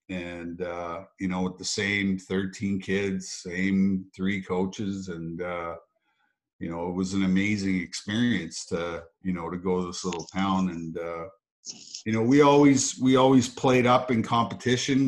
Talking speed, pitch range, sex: 165 wpm, 90-115 Hz, male